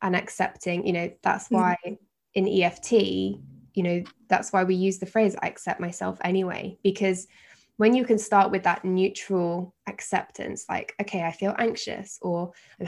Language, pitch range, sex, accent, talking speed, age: English, 180-210 Hz, female, British, 170 wpm, 10-29